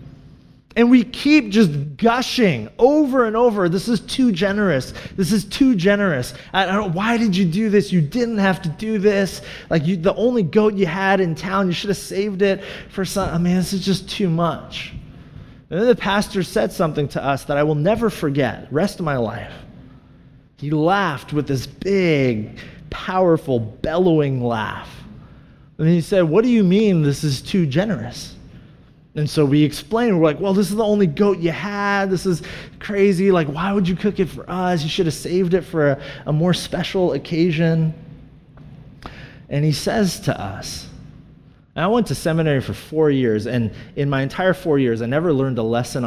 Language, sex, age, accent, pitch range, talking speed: English, male, 30-49, American, 140-195 Hz, 190 wpm